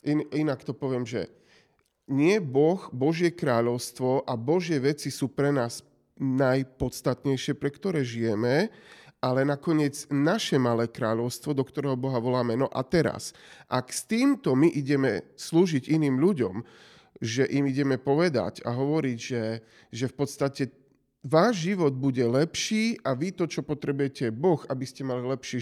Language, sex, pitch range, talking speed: Slovak, male, 130-160 Hz, 145 wpm